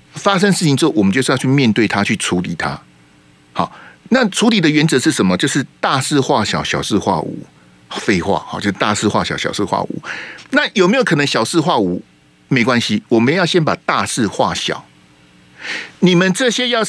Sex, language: male, Chinese